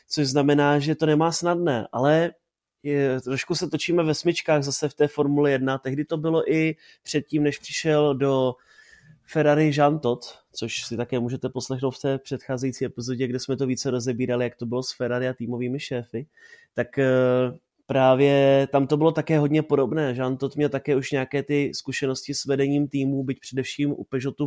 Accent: native